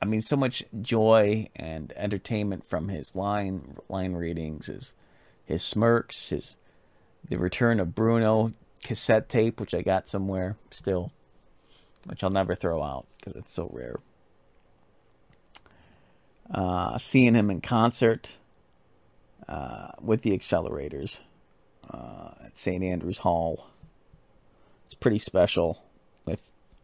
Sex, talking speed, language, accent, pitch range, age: male, 120 wpm, English, American, 90-110 Hz, 40-59